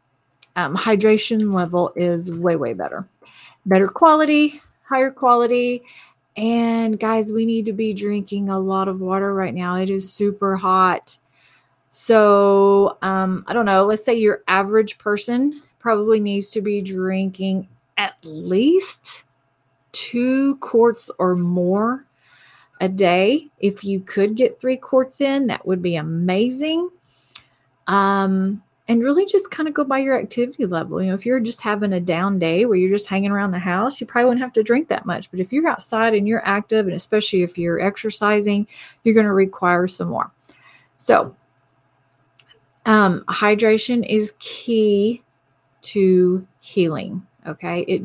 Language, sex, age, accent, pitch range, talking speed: English, female, 30-49, American, 180-230 Hz, 155 wpm